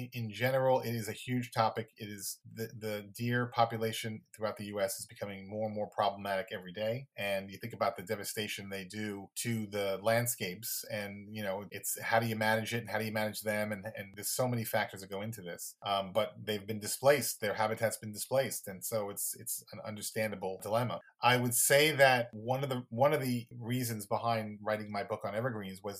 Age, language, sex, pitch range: 30-49, English, male, 100-115 Hz